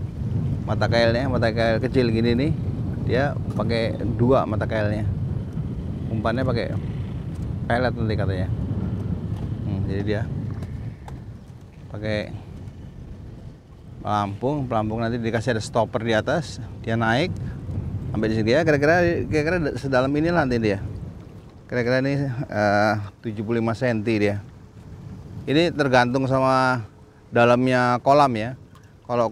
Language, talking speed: Indonesian, 110 wpm